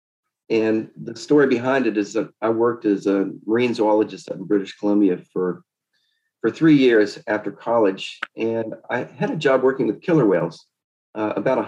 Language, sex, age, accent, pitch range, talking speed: English, male, 40-59, American, 105-135 Hz, 180 wpm